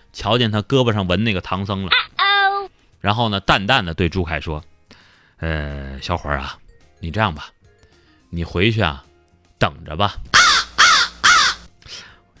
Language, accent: Chinese, native